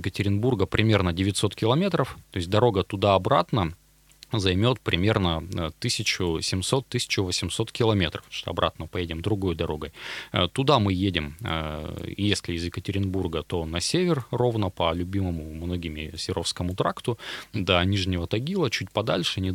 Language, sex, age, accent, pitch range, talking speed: Russian, male, 30-49, native, 85-105 Hz, 115 wpm